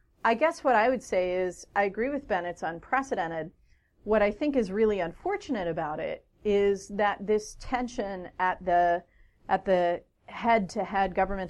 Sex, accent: female, American